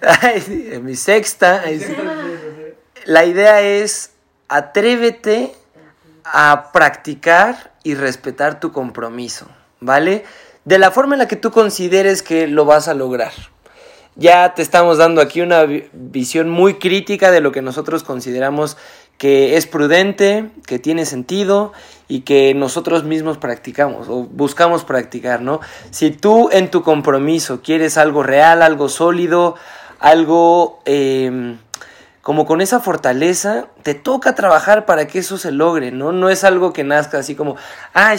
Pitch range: 140-180 Hz